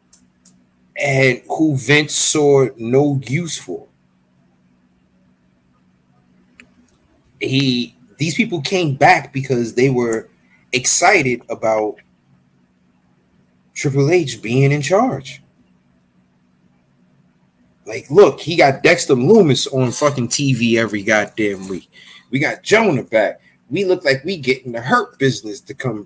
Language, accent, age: English, American, 30-49